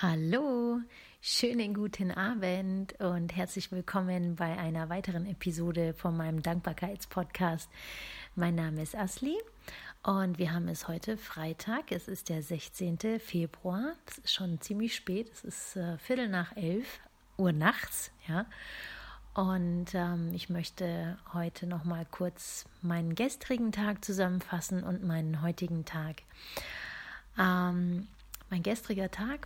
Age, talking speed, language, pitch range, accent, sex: 30-49, 130 wpm, German, 170-205 Hz, German, female